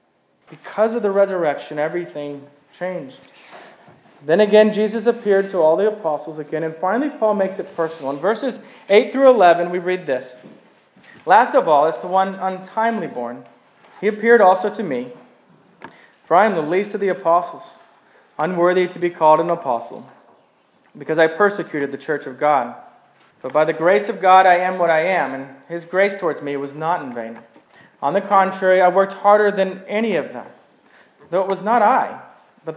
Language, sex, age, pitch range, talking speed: English, male, 20-39, 165-215 Hz, 180 wpm